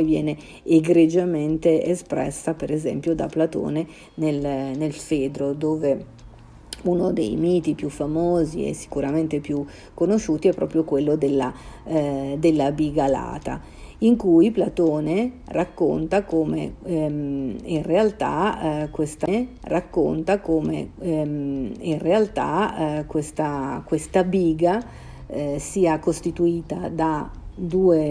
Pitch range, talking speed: 150-170 Hz, 105 wpm